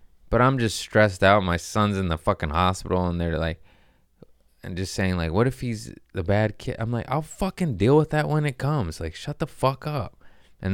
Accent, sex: American, male